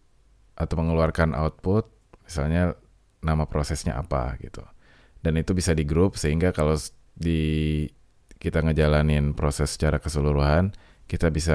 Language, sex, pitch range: Indonesian, male, 80-95 Hz